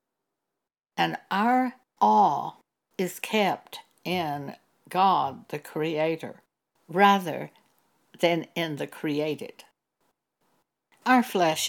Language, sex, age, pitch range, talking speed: English, female, 60-79, 155-205 Hz, 80 wpm